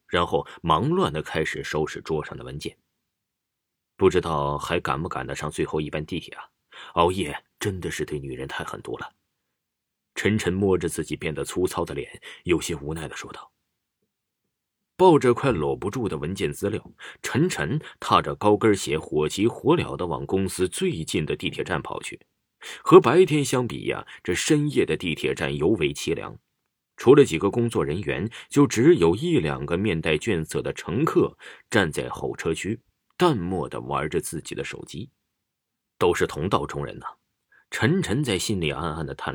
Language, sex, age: Chinese, male, 30-49